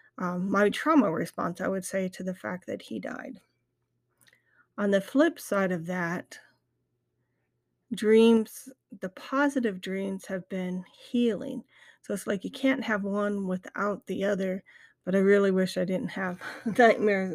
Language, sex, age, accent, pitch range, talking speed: English, female, 40-59, American, 185-215 Hz, 150 wpm